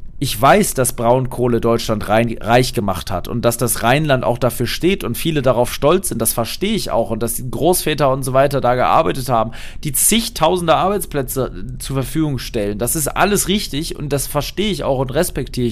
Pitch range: 115-145 Hz